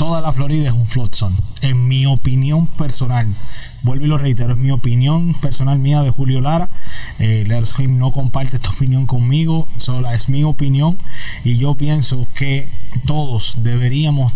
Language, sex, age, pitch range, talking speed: Spanish, male, 20-39, 120-145 Hz, 160 wpm